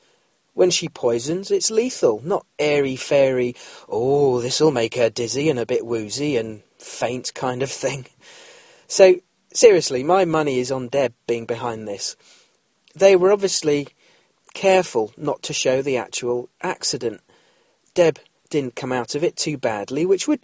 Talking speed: 150 wpm